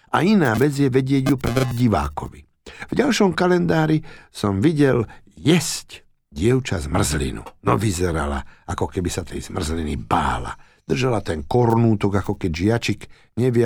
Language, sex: Slovak, male